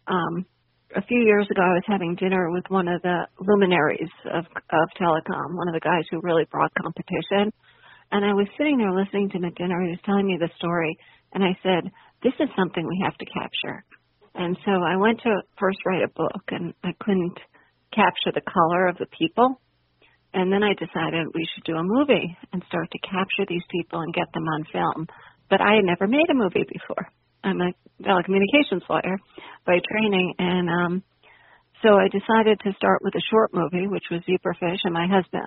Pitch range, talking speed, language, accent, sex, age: 170-195 Hz, 205 wpm, English, American, female, 40-59